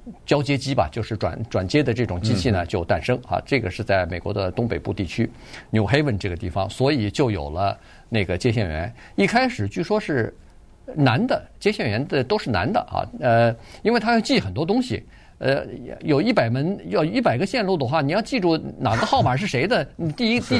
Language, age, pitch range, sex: Chinese, 50-69, 110-165 Hz, male